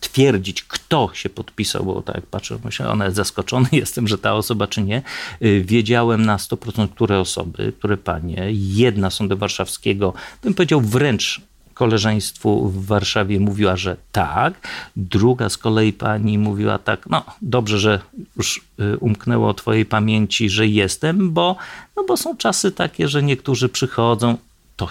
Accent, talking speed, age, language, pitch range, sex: native, 155 wpm, 40-59, Polish, 105-140 Hz, male